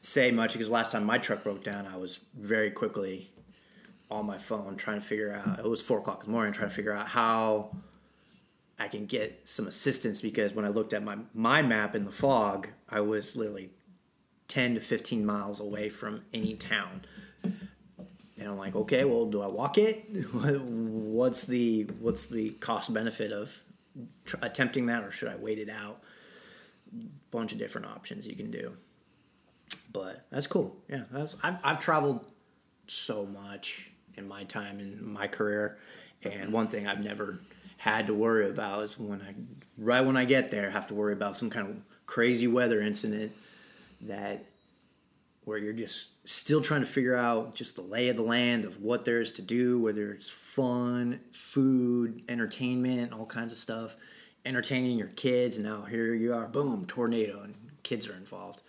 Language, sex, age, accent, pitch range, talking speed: English, male, 30-49, American, 105-125 Hz, 180 wpm